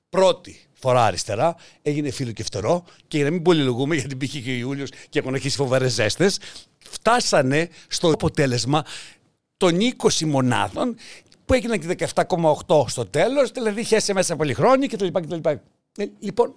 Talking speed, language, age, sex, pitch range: 150 wpm, Greek, 60-79, male, 135-185 Hz